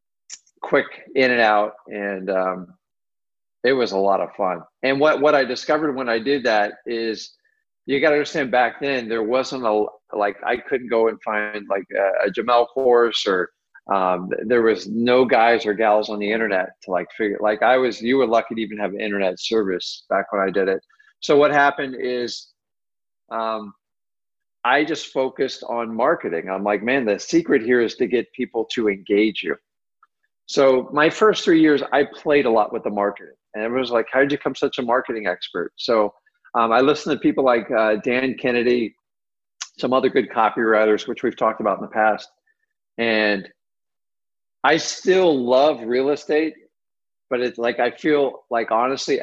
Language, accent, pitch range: English, American, 110-145 Hz